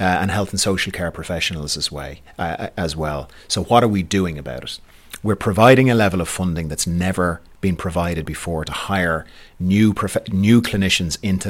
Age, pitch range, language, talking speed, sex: 30-49, 85-100 Hz, English, 195 wpm, male